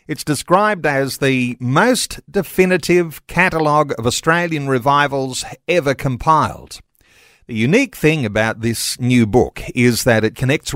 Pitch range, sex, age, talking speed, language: 125-170 Hz, male, 50-69, 130 wpm, English